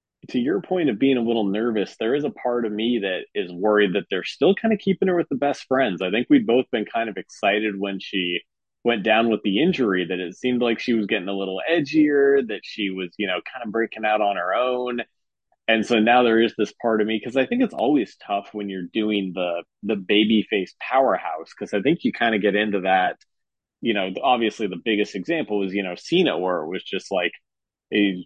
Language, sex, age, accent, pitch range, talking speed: English, male, 20-39, American, 100-120 Hz, 240 wpm